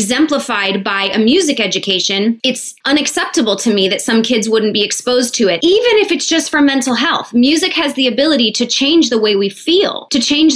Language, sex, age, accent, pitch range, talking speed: English, female, 20-39, American, 215-265 Hz, 205 wpm